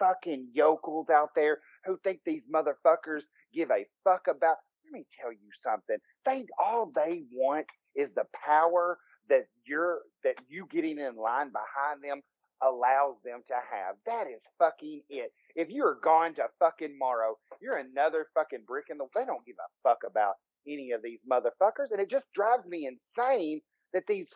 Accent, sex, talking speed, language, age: American, male, 175 wpm, English, 40-59